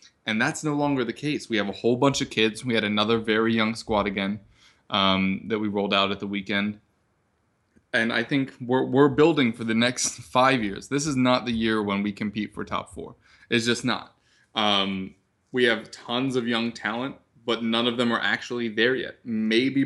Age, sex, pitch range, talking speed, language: 20-39, male, 105-135 Hz, 210 wpm, English